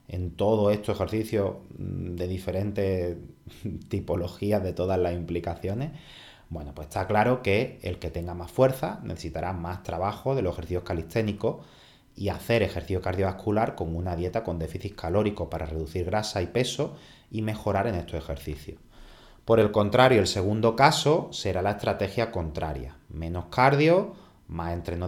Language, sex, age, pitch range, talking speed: Spanish, male, 30-49, 90-120 Hz, 150 wpm